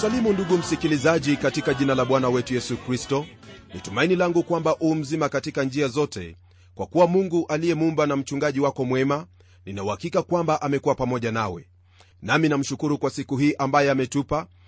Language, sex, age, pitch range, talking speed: Swahili, male, 40-59, 105-165 Hz, 155 wpm